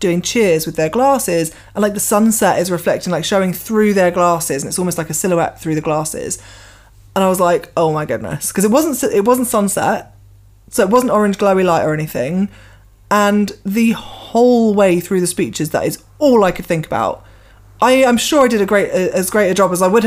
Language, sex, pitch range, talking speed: English, female, 170-220 Hz, 220 wpm